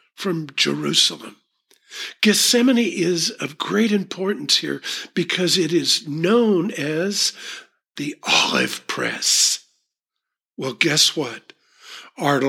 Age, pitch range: 50-69, 165-210 Hz